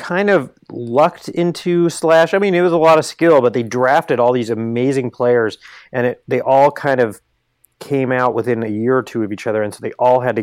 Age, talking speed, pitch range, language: 30-49, 235 wpm, 110-130 Hz, English